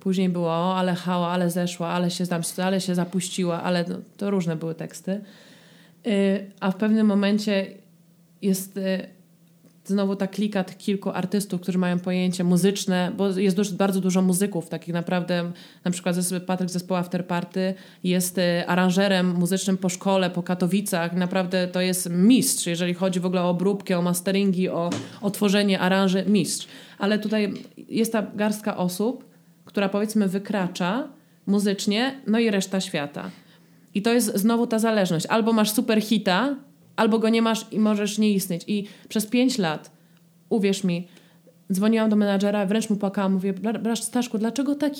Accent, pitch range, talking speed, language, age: native, 180-220 Hz, 160 wpm, Polish, 20-39